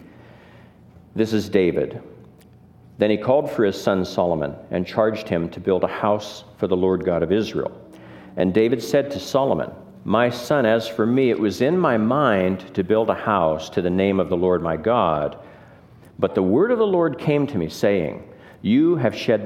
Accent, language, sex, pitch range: American, English, male, 90-140 Hz